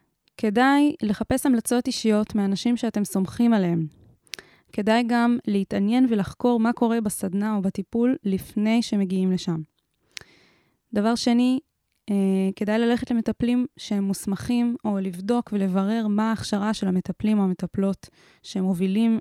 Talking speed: 120 wpm